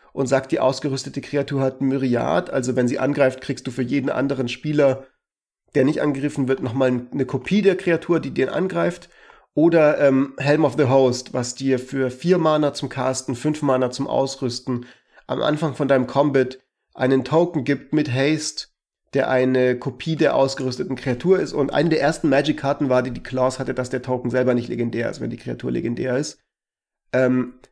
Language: German